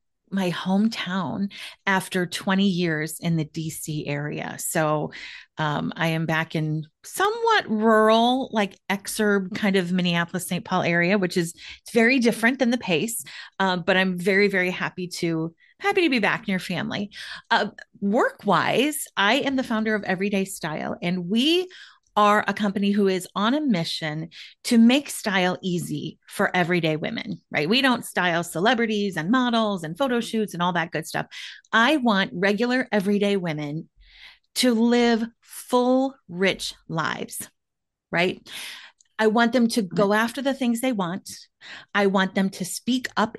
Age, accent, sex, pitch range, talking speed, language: 30-49, American, female, 180-235 Hz, 160 wpm, English